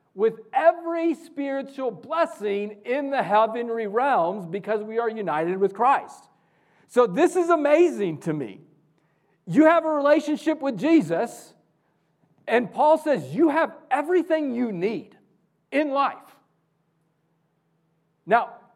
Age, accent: 40-59, American